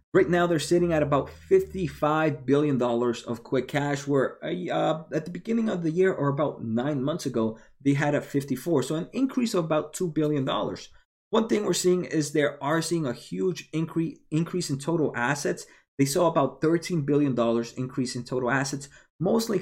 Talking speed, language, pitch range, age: 195 wpm, English, 140-175 Hz, 20-39